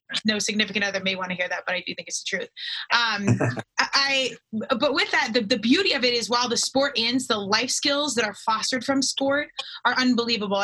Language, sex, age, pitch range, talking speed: English, female, 20-39, 210-245 Hz, 225 wpm